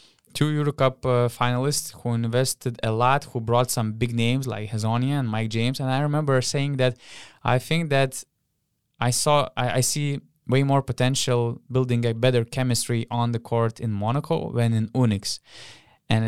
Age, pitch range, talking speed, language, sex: 20-39, 110-140 Hz, 175 wpm, English, male